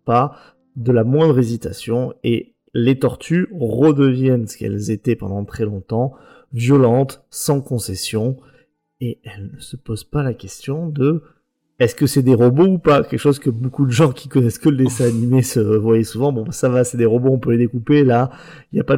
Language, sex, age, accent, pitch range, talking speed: French, male, 30-49, French, 120-150 Hz, 200 wpm